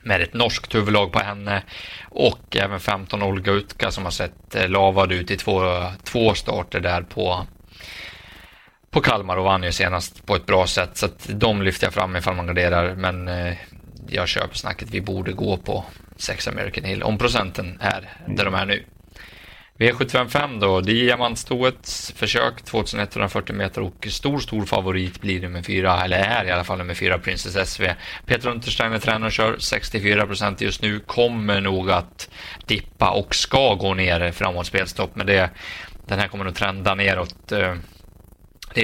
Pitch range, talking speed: 90-110 Hz, 170 wpm